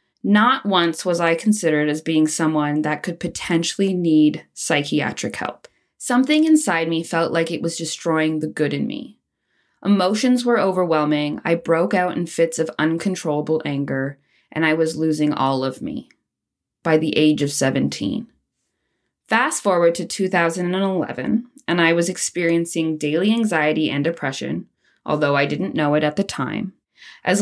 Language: English